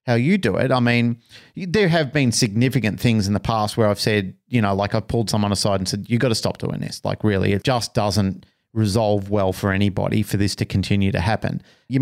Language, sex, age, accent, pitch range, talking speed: English, male, 30-49, Australian, 105-130 Hz, 240 wpm